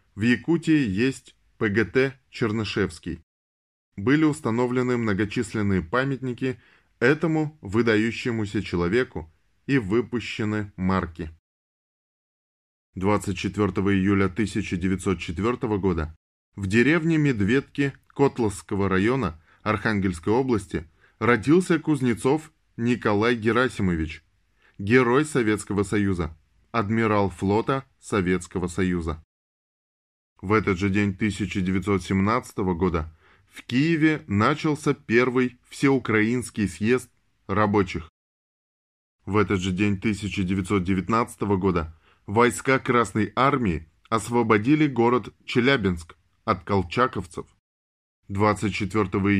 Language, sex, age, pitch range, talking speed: Russian, male, 10-29, 95-125 Hz, 80 wpm